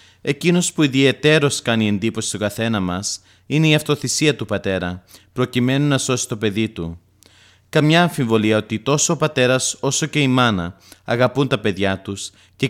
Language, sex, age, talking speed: Greek, male, 30-49, 160 wpm